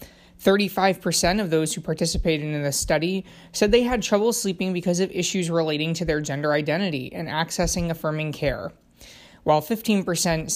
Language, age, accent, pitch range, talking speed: English, 20-39, American, 150-185 Hz, 150 wpm